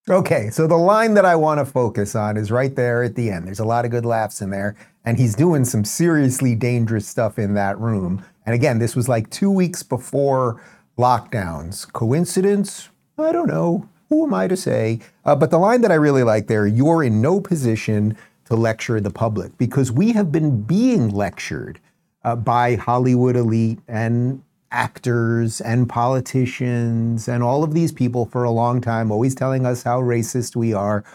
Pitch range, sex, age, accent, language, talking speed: 115-150 Hz, male, 40-59, American, English, 190 wpm